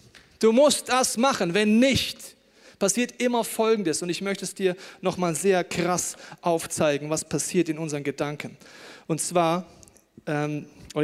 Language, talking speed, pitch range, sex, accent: German, 140 wpm, 150-185 Hz, male, German